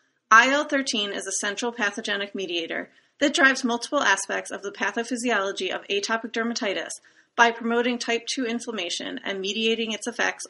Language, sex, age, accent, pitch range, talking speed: English, female, 30-49, American, 190-240 Hz, 145 wpm